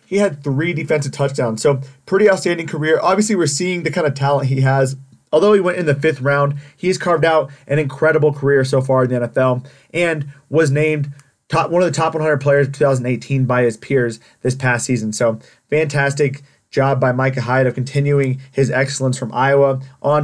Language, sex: English, male